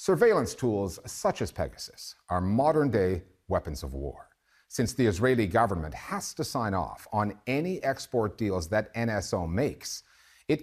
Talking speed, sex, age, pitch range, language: 145 wpm, male, 50-69, 95-125 Hz, English